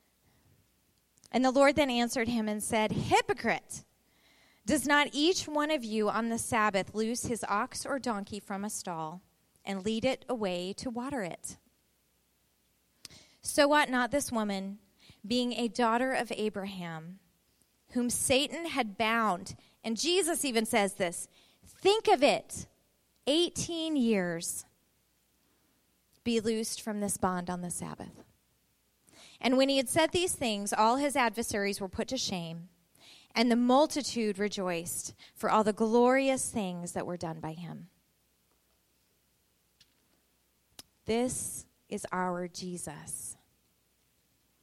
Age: 30-49